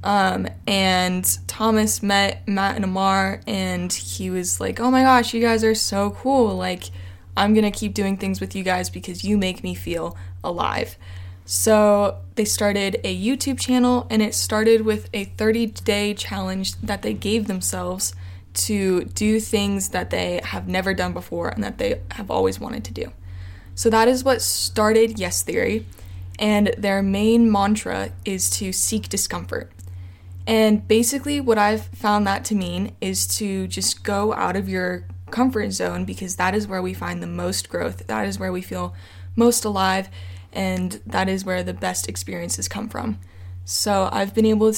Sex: female